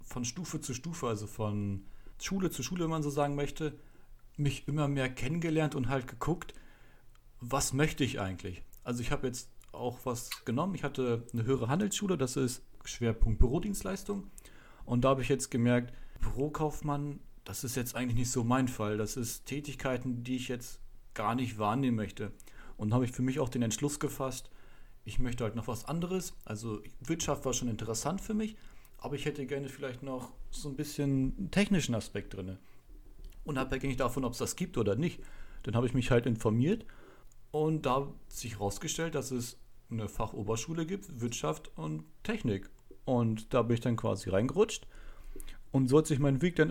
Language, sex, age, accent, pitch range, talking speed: German, male, 40-59, German, 115-145 Hz, 185 wpm